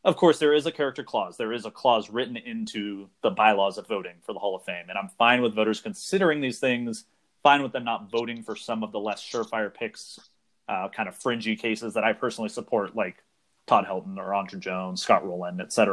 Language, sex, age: English, male, 30-49